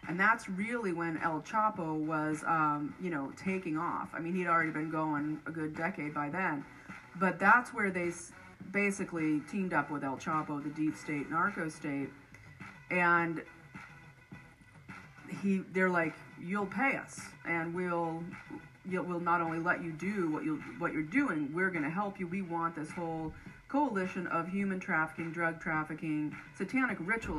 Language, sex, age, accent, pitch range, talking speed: English, female, 30-49, American, 155-185 Hz, 170 wpm